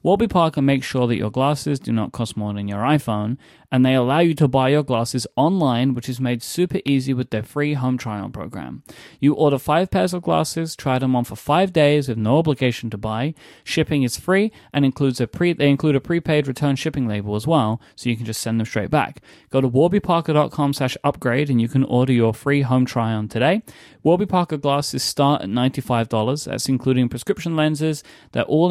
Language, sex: English, male